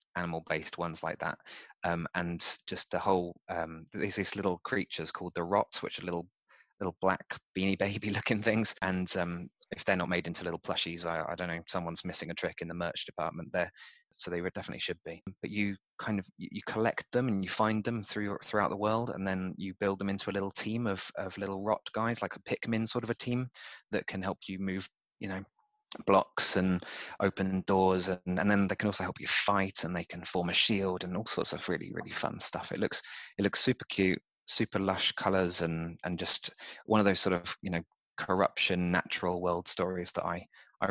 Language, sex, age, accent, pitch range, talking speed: English, male, 20-39, British, 85-105 Hz, 220 wpm